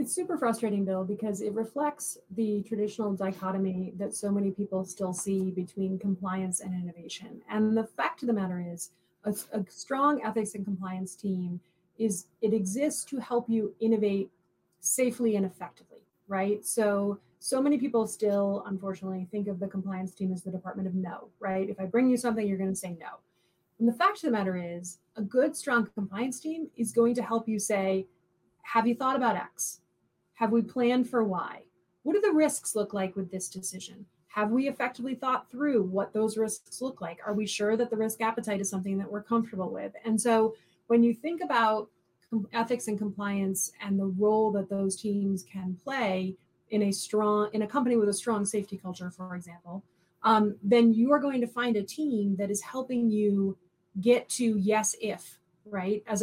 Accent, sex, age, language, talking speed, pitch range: American, female, 30-49, English, 195 wpm, 190-230 Hz